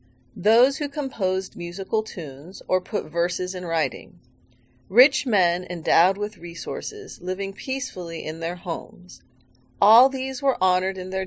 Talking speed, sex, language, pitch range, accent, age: 140 wpm, female, English, 165-215 Hz, American, 40-59